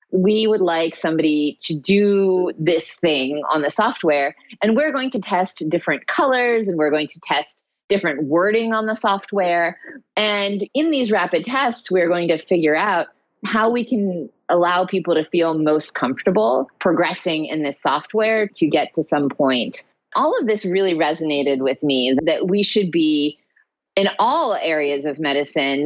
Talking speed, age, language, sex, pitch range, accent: 165 wpm, 30-49, English, female, 155-215 Hz, American